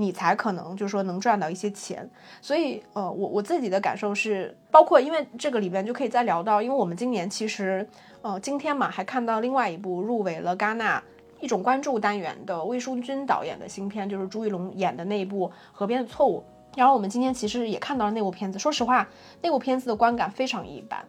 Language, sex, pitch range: Chinese, female, 195-255 Hz